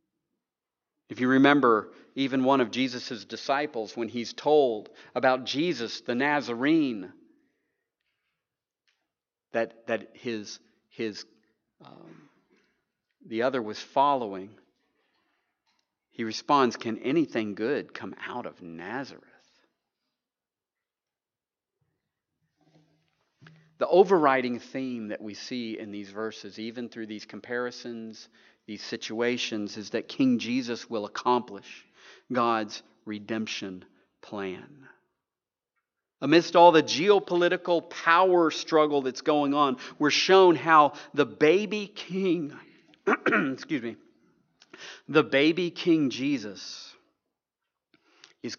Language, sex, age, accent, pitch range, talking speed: English, male, 40-59, American, 115-155 Hz, 100 wpm